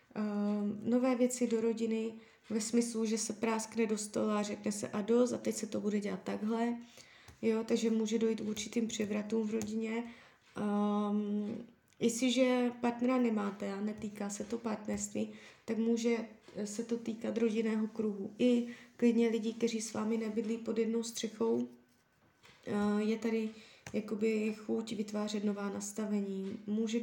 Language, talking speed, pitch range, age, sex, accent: Czech, 145 wpm, 215-235 Hz, 20-39, female, native